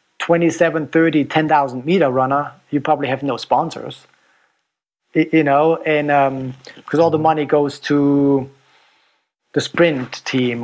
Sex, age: male, 40-59